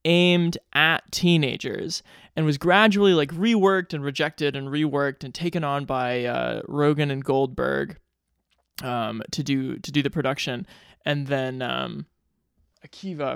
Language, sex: English, male